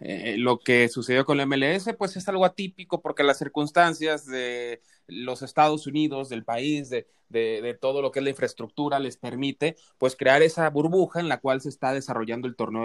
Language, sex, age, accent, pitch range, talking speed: Spanish, male, 20-39, Mexican, 125-155 Hz, 200 wpm